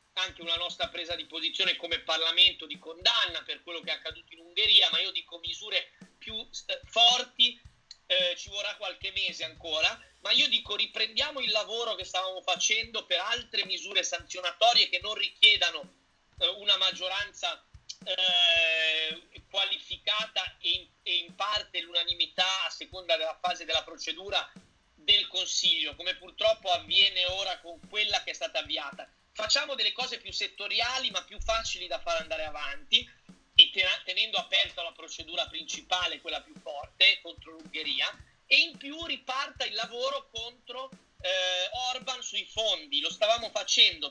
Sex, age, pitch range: male, 30-49, 180-265 Hz